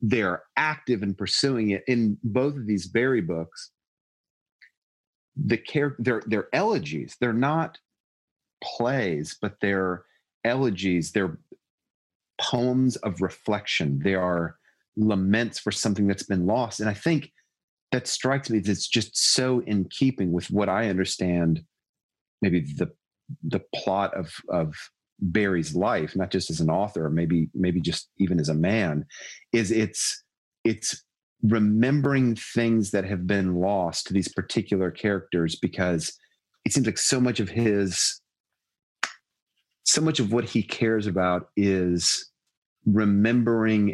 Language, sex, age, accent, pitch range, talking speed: English, male, 30-49, American, 90-115 Hz, 135 wpm